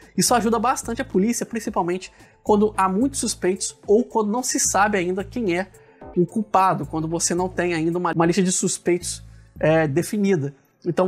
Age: 20-39